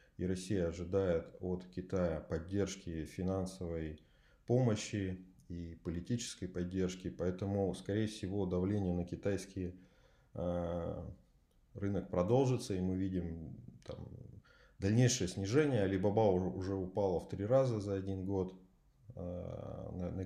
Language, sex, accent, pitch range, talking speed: Russian, male, native, 90-110 Hz, 100 wpm